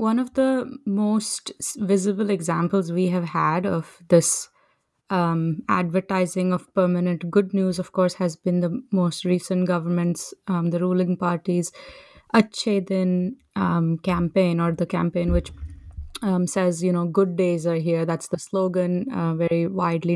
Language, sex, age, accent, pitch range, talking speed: English, female, 20-39, Indian, 175-195 Hz, 150 wpm